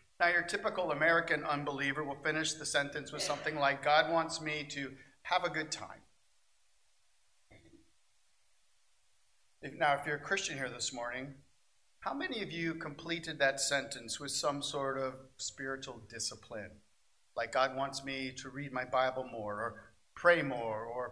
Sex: male